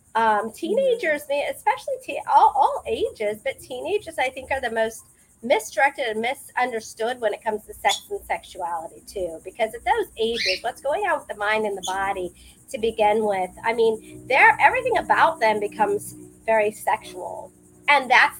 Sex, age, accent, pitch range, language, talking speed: female, 40-59, American, 210-300 Hz, English, 165 wpm